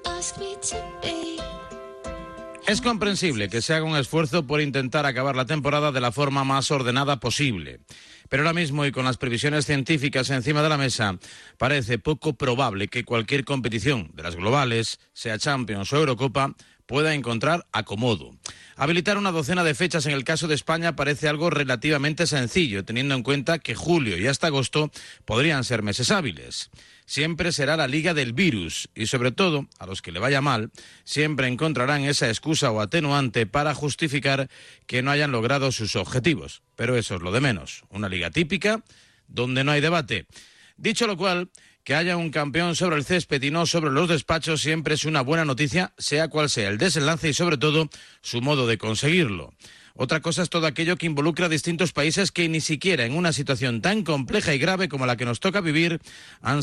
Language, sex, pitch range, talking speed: English, male, 130-165 Hz, 185 wpm